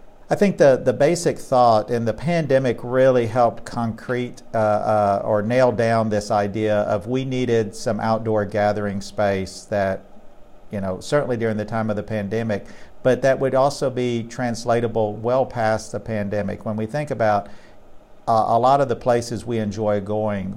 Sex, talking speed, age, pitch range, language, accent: male, 170 wpm, 50-69, 105-120 Hz, English, American